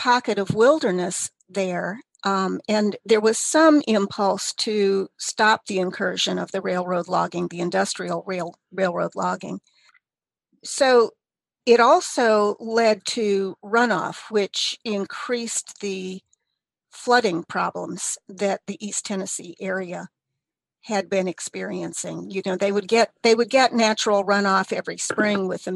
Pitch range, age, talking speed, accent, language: 185-225 Hz, 50-69, 130 wpm, American, English